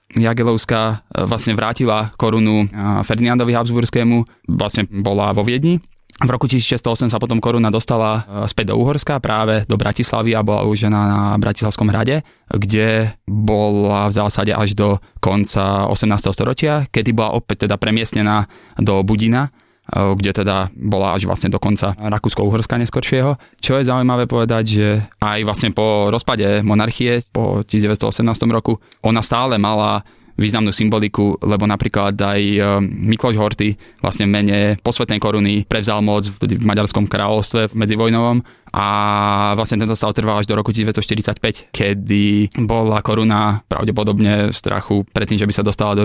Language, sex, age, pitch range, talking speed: Slovak, male, 20-39, 105-115 Hz, 140 wpm